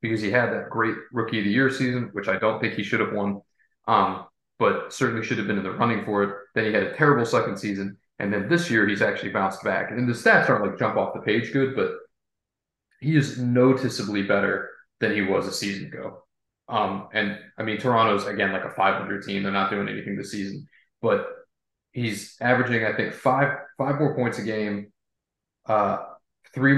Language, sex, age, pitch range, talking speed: English, male, 30-49, 100-125 Hz, 215 wpm